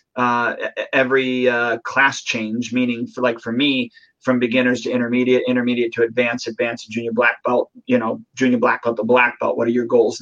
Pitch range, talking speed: 125-150 Hz, 195 wpm